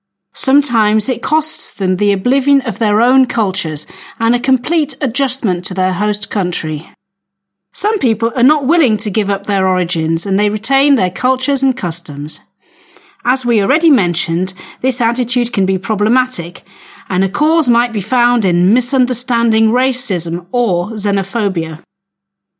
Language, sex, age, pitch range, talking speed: Slovak, female, 40-59, 195-265 Hz, 145 wpm